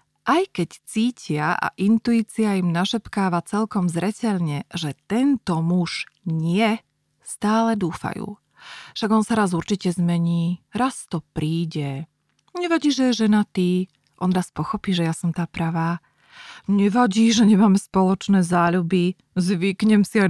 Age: 30-49